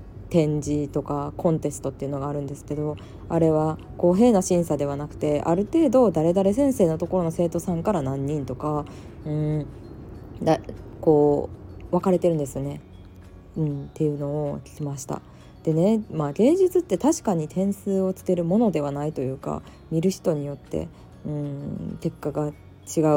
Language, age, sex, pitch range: Japanese, 20-39, female, 140-175 Hz